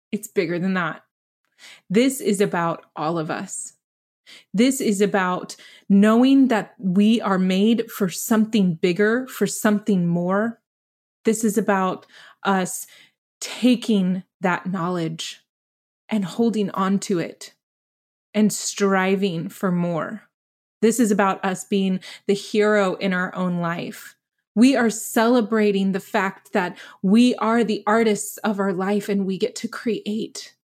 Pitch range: 185-220 Hz